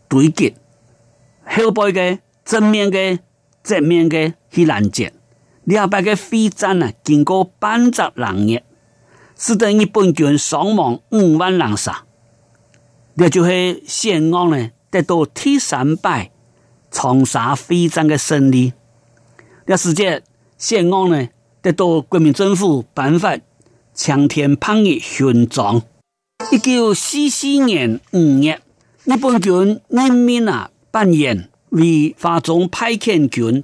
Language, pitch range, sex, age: Chinese, 120-185 Hz, male, 50-69